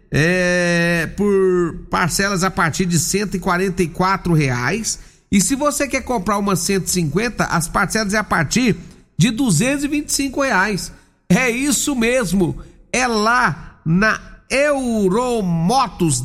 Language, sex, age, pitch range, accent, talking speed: Portuguese, male, 50-69, 175-225 Hz, Brazilian, 125 wpm